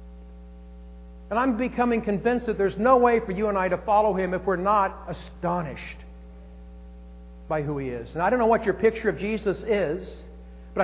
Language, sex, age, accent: English, male, 50-69, American